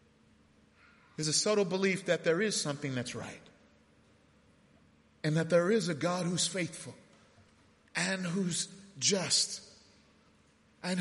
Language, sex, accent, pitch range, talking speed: English, male, American, 175-255 Hz, 120 wpm